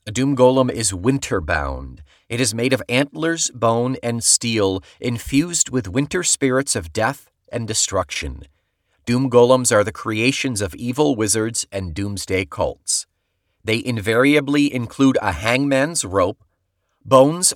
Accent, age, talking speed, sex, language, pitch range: American, 30-49, 135 wpm, male, English, 100-130 Hz